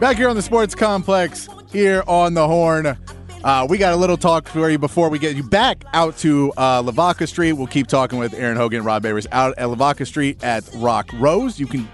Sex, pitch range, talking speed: male, 130-200 Hz, 230 wpm